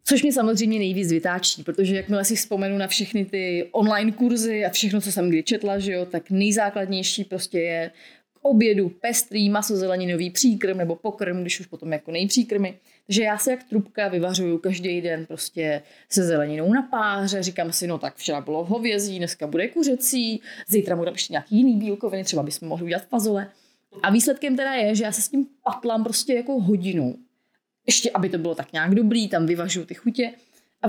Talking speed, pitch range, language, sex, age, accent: 190 wpm, 180-240 Hz, Czech, female, 30-49, native